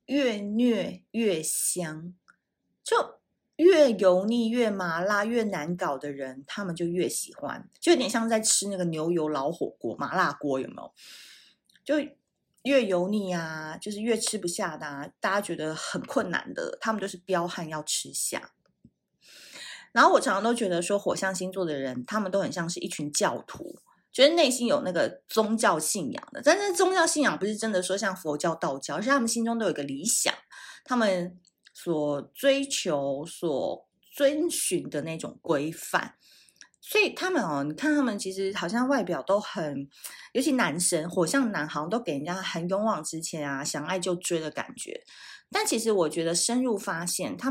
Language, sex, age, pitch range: Chinese, female, 30-49, 165-245 Hz